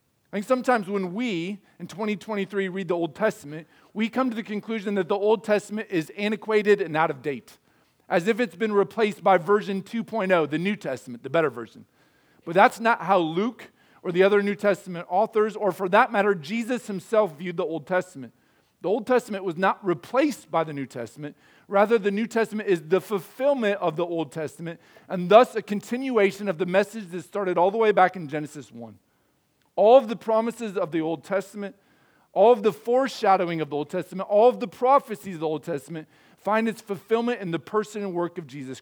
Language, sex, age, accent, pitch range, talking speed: English, male, 40-59, American, 170-220 Hz, 200 wpm